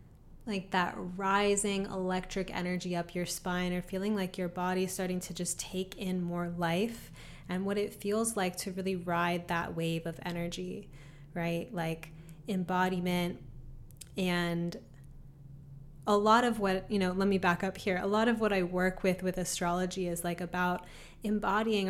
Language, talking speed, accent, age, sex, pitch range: English, 165 wpm, American, 20-39, female, 175-200 Hz